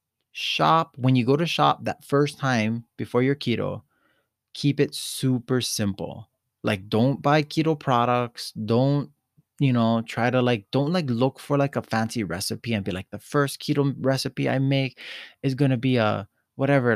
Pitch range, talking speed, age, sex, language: 110-135 Hz, 175 wpm, 20-39, male, English